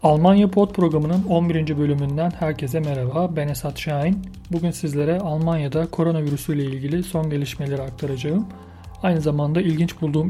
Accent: native